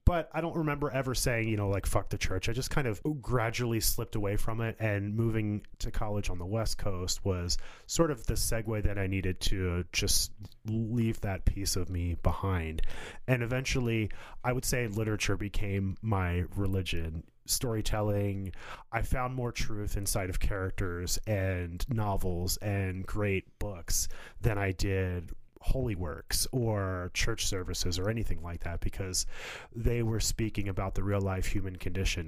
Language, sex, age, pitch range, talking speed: English, male, 30-49, 90-110 Hz, 165 wpm